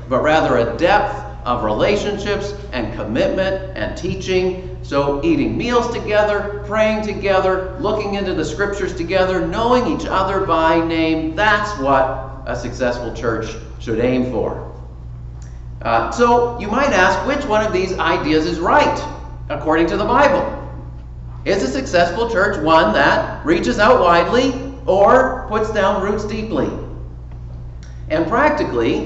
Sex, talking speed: male, 135 wpm